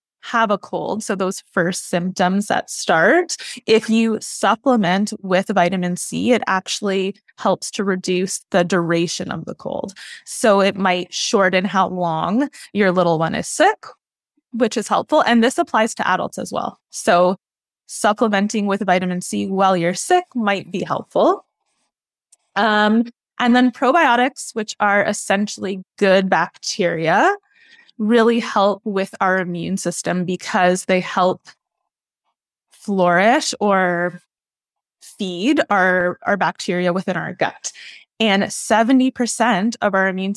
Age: 20-39